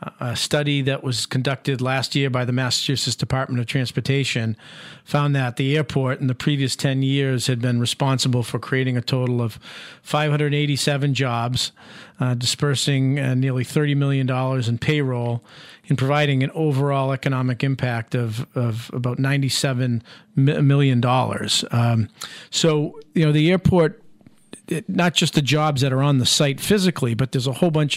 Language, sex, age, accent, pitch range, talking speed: English, male, 40-59, American, 130-150 Hz, 160 wpm